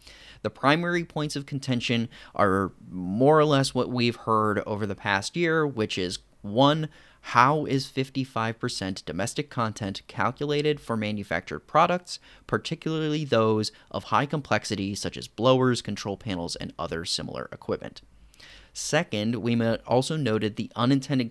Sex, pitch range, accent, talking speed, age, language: male, 100-135 Hz, American, 135 wpm, 30-49, English